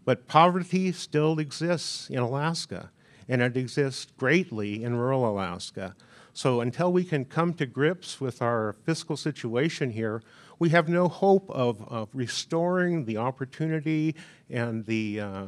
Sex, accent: male, American